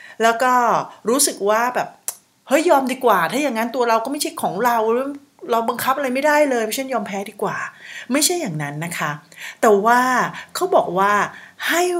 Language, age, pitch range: Thai, 30-49, 185-255 Hz